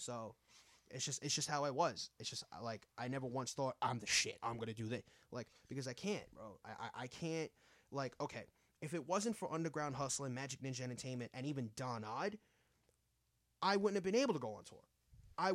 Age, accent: 20-39, American